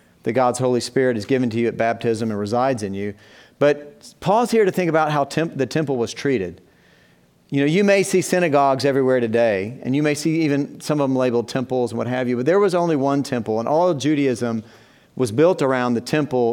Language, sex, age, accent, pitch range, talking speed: English, male, 40-59, American, 120-150 Hz, 225 wpm